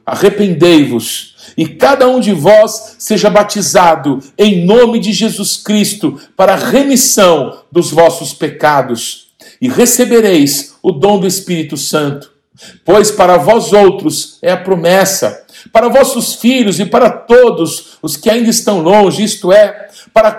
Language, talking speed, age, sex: Portuguese, 140 wpm, 60-79, male